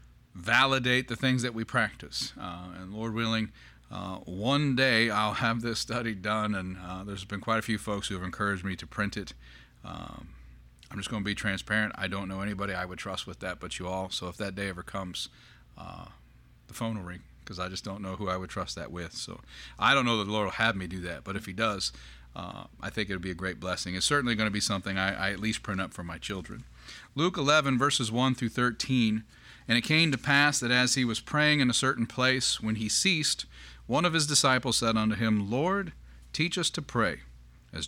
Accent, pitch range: American, 90-120 Hz